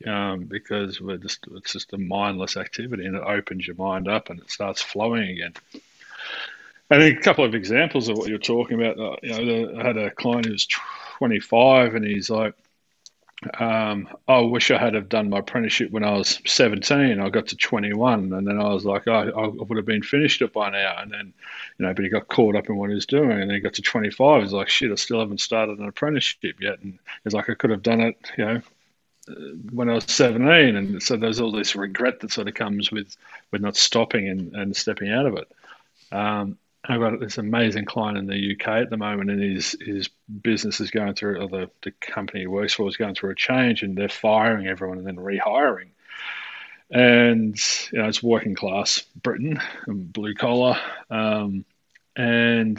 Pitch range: 100-115 Hz